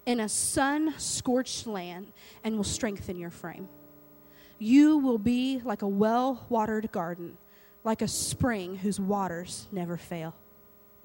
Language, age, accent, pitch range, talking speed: English, 20-39, American, 200-285 Hz, 130 wpm